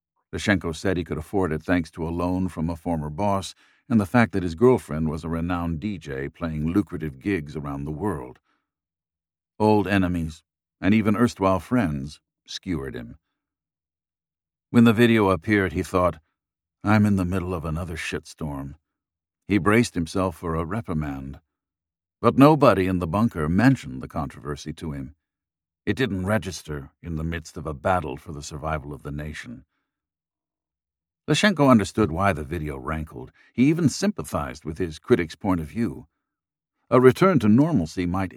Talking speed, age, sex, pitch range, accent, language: 160 wpm, 50-69, male, 80-105 Hz, American, English